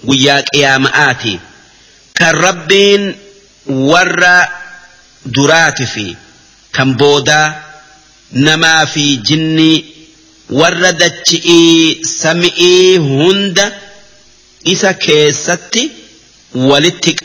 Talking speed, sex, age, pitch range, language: 65 wpm, male, 50-69, 140-180 Hz, Arabic